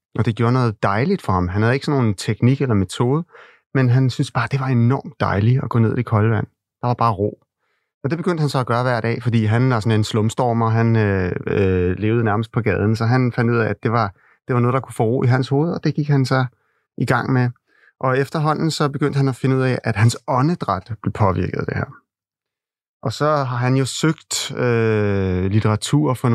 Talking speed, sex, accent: 250 wpm, male, native